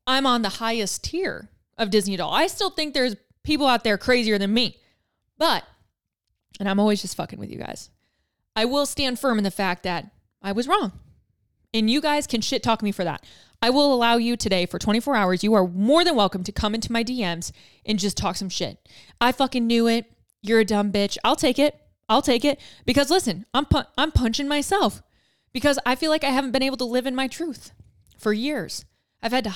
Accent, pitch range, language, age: American, 200-260 Hz, English, 20-39